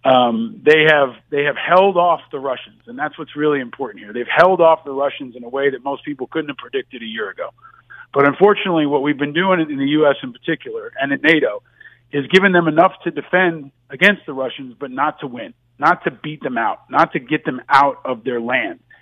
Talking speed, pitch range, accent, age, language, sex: 230 wpm, 140-170 Hz, American, 40-59, English, male